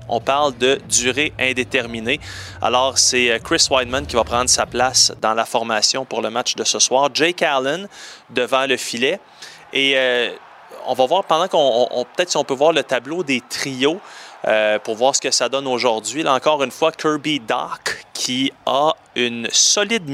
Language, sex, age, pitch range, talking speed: French, male, 30-49, 120-165 Hz, 190 wpm